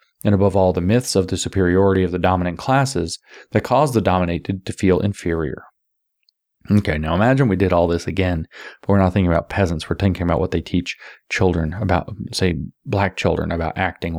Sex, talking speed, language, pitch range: male, 195 wpm, English, 90-100 Hz